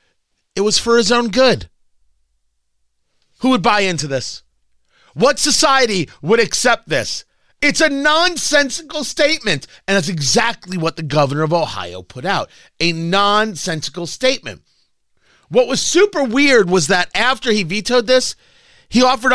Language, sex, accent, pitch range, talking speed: English, male, American, 140-220 Hz, 140 wpm